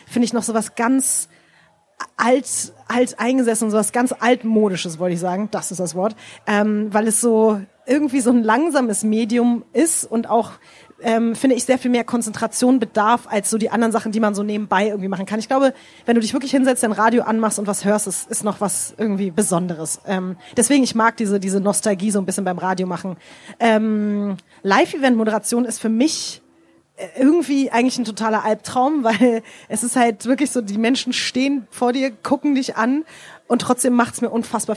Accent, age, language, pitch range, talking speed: German, 30-49, German, 210-240 Hz, 195 wpm